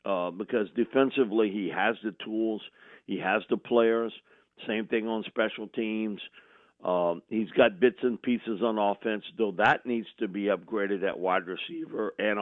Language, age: English, 50-69